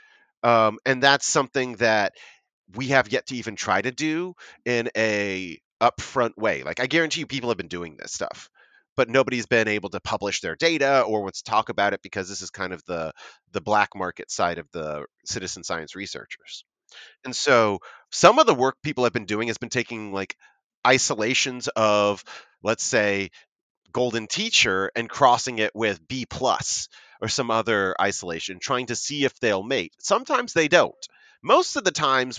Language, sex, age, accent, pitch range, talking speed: English, male, 30-49, American, 100-130 Hz, 185 wpm